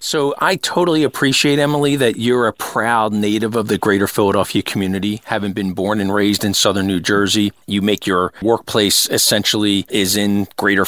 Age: 40-59